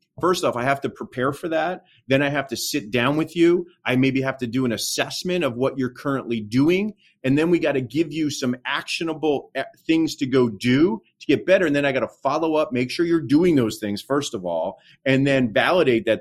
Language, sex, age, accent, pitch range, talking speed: English, male, 30-49, American, 125-170 Hz, 235 wpm